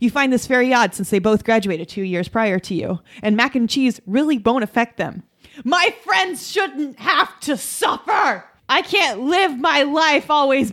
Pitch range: 215-290 Hz